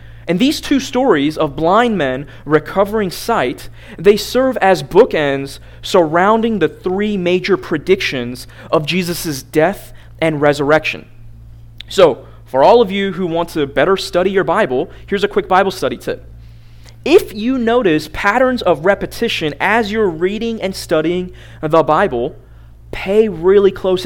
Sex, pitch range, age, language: male, 120-190 Hz, 30-49, English